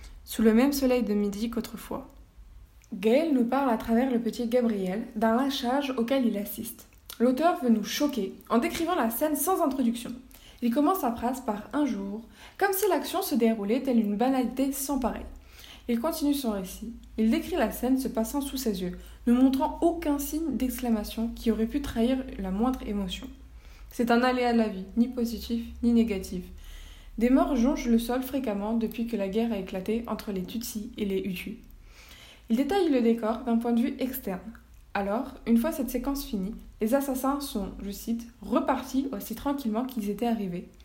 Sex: female